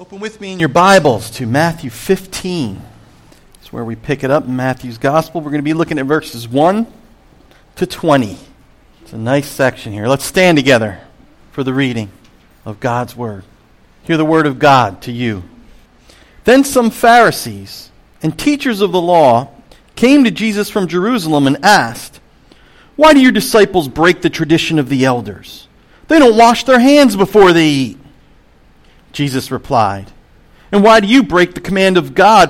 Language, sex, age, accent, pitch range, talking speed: English, male, 40-59, American, 135-220 Hz, 170 wpm